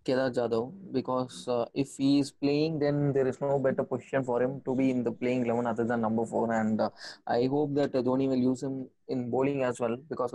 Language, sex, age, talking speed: English, male, 20-39, 240 wpm